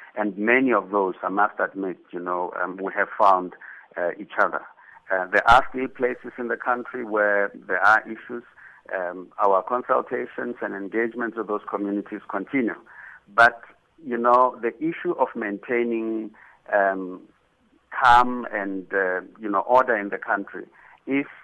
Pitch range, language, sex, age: 100-120 Hz, English, male, 60-79